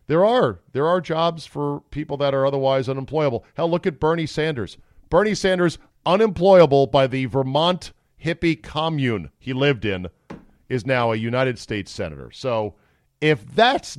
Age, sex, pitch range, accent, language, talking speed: 50-69, male, 110-145 Hz, American, English, 155 wpm